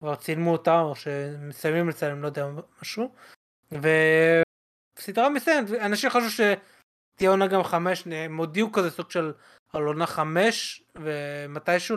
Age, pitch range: 20-39, 155-210 Hz